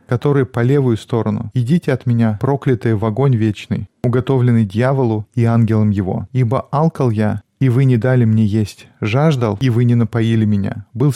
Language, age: Russian, 20-39